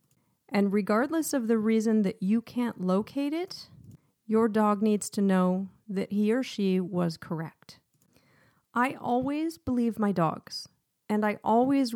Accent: American